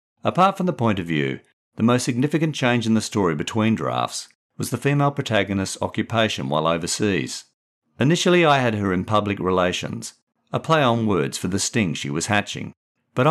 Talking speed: 180 wpm